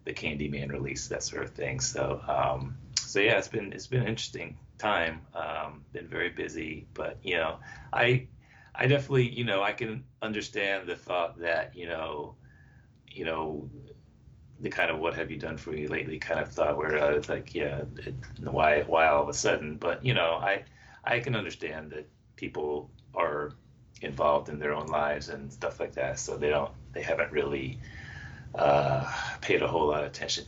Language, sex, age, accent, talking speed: English, male, 40-59, American, 190 wpm